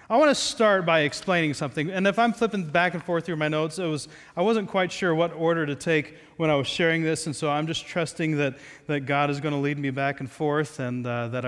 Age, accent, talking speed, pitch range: 40-59, American, 265 wpm, 145-195 Hz